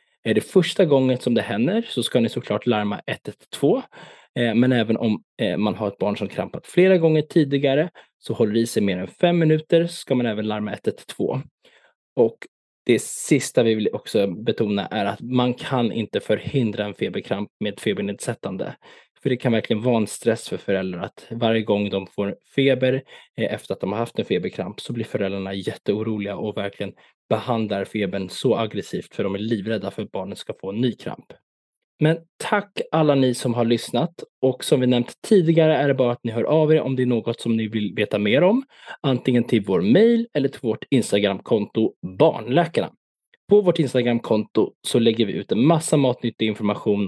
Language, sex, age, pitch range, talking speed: Swedish, male, 20-39, 105-145 Hz, 190 wpm